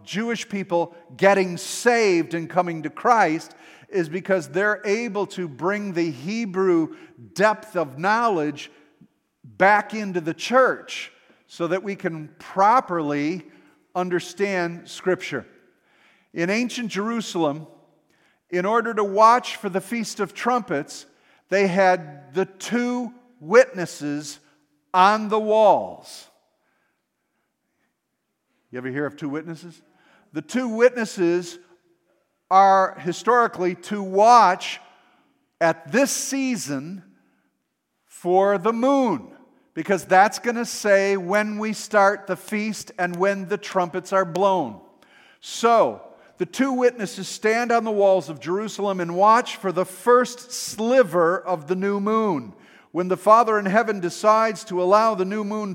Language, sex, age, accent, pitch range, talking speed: English, male, 50-69, American, 175-225 Hz, 125 wpm